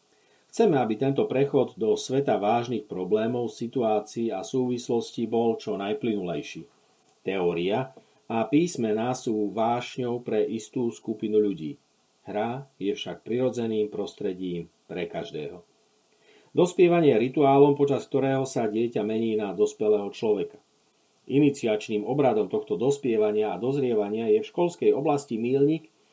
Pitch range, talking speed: 115-140 Hz, 120 wpm